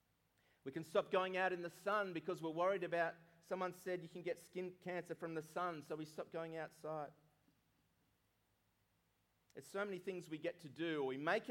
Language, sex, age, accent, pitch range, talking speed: English, male, 30-49, Australian, 145-190 Hz, 200 wpm